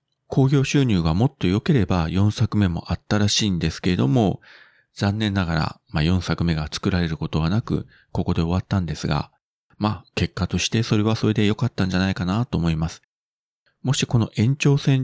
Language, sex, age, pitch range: Japanese, male, 40-59, 85-130 Hz